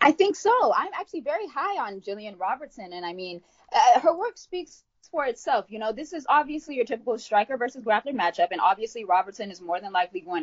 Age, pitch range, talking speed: 20-39, 195-315 Hz, 220 wpm